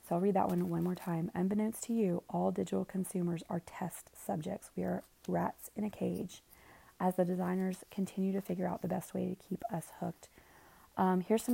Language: English